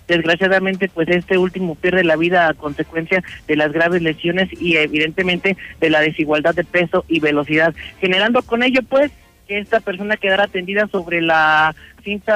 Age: 40-59